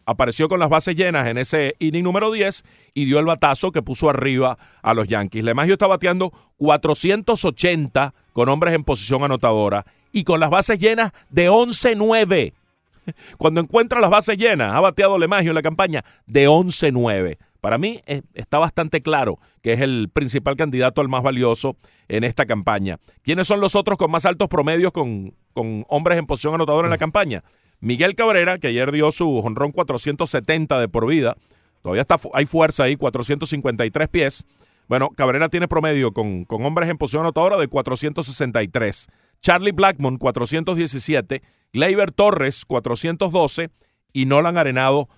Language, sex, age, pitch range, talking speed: Spanish, male, 40-59, 120-175 Hz, 160 wpm